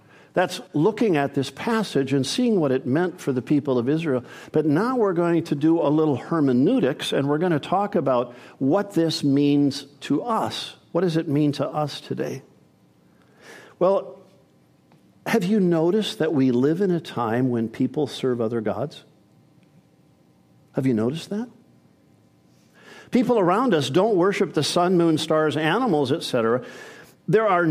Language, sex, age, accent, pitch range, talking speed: English, male, 50-69, American, 140-190 Hz, 160 wpm